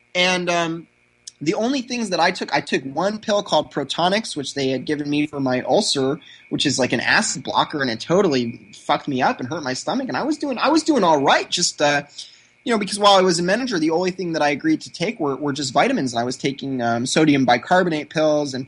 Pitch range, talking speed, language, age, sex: 140-180 Hz, 250 wpm, English, 20-39, male